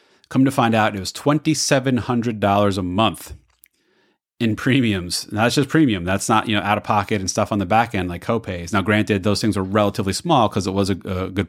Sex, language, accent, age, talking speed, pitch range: male, English, American, 30-49, 215 wpm, 90-110 Hz